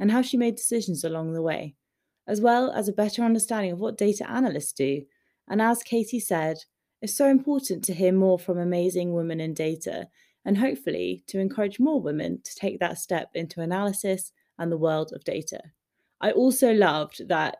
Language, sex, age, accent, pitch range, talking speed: English, female, 20-39, British, 165-230 Hz, 190 wpm